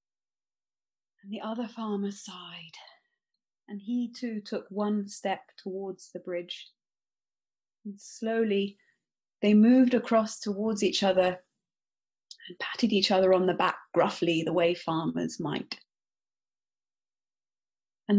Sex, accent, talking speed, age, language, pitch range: female, British, 115 wpm, 30-49, English, 195-255 Hz